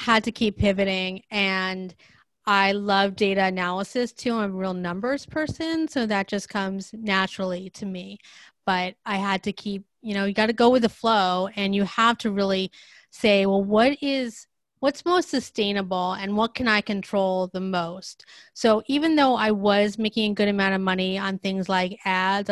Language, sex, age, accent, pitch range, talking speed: English, female, 30-49, American, 190-225 Hz, 185 wpm